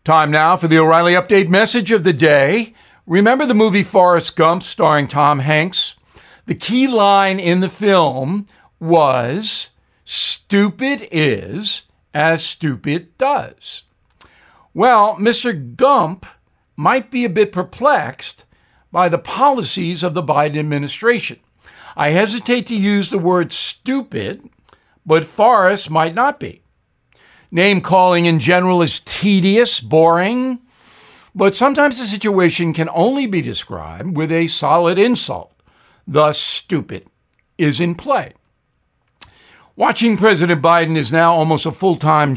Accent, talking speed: American, 125 wpm